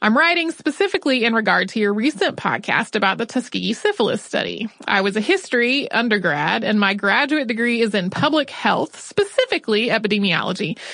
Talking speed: 160 wpm